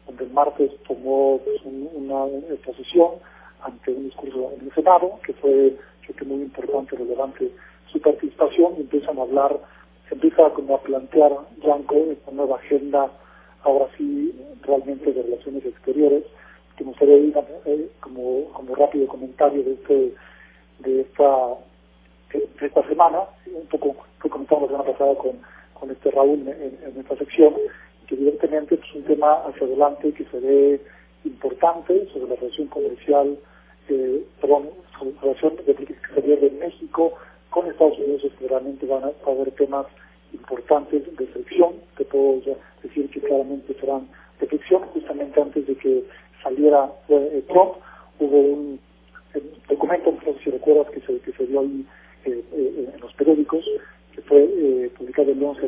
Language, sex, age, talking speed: Spanish, male, 40-59, 165 wpm